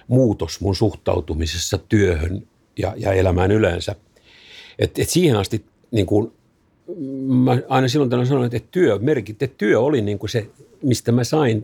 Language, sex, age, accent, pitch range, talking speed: Finnish, male, 50-69, native, 100-125 Hz, 165 wpm